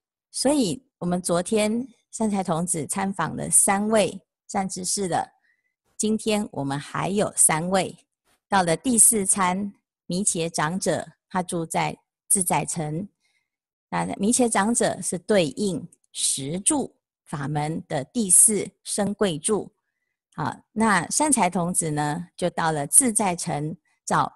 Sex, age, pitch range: female, 30-49, 170-230 Hz